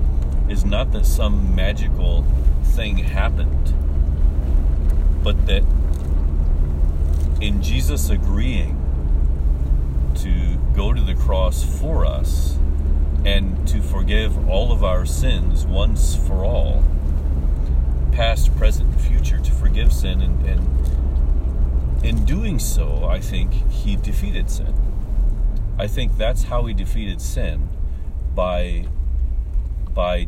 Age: 40-59